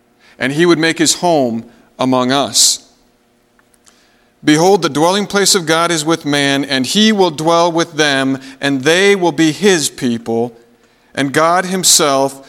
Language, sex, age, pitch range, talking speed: English, male, 50-69, 125-160 Hz, 155 wpm